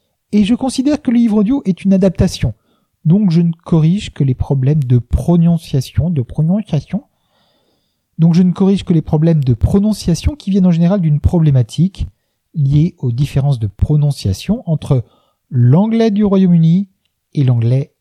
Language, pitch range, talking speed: French, 135-190 Hz, 155 wpm